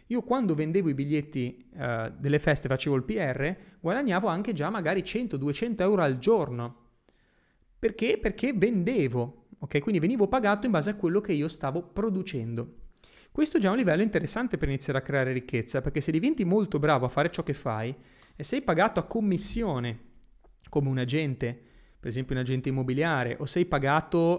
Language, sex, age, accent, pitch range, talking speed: Italian, male, 30-49, native, 125-185 Hz, 170 wpm